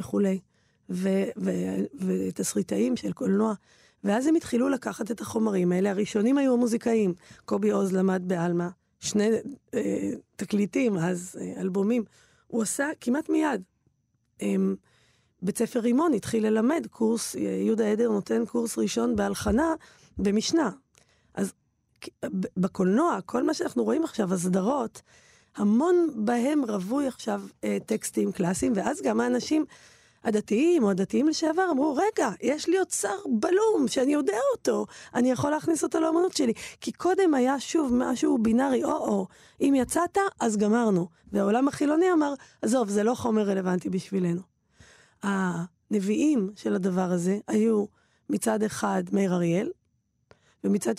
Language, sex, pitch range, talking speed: Hebrew, female, 190-275 Hz, 130 wpm